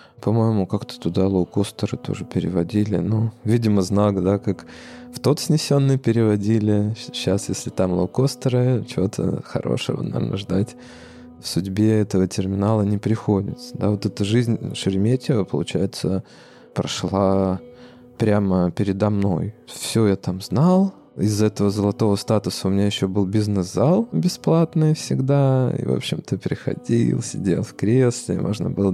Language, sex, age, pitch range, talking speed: Russian, male, 20-39, 95-125 Hz, 130 wpm